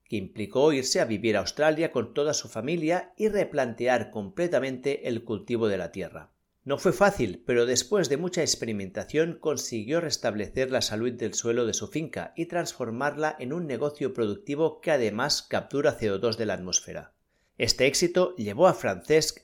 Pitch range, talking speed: 115-165 Hz, 165 wpm